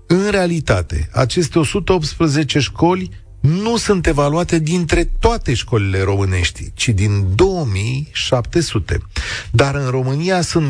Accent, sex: native, male